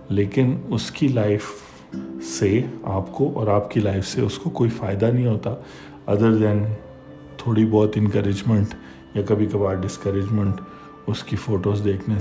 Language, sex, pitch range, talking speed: Urdu, male, 100-120 Hz, 150 wpm